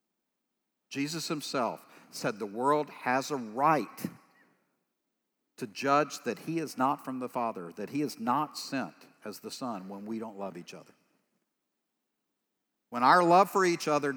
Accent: American